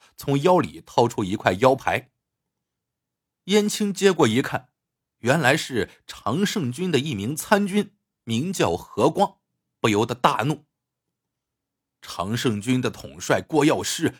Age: 50-69